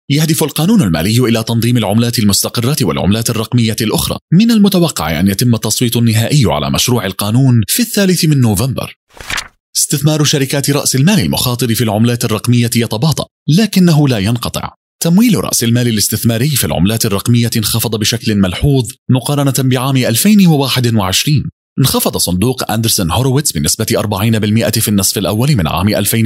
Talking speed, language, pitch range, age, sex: 135 wpm, Arabic, 110-145 Hz, 30-49, male